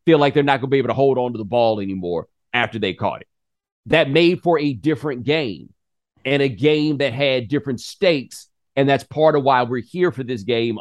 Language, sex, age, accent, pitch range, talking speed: English, male, 40-59, American, 110-150 Hz, 235 wpm